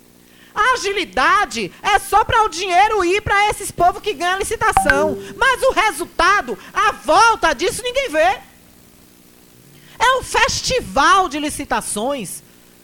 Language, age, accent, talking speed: Portuguese, 40-59, Brazilian, 125 wpm